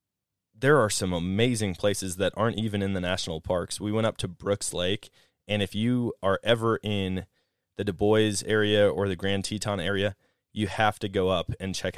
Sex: male